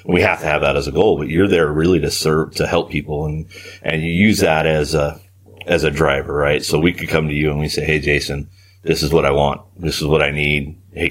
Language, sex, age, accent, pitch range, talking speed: English, male, 40-59, American, 75-95 Hz, 270 wpm